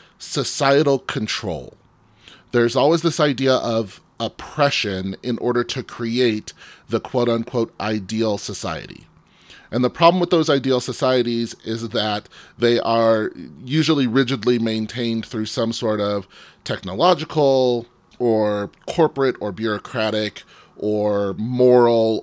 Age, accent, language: 30-49, American, English